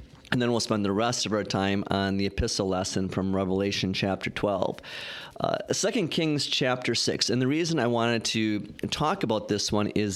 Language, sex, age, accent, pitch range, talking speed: English, male, 40-59, American, 105-130 Hz, 195 wpm